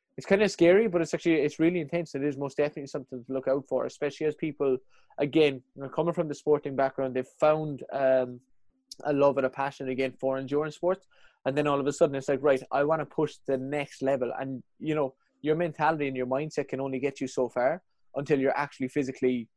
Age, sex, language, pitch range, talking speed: 20-39, male, English, 130-150 Hz, 225 wpm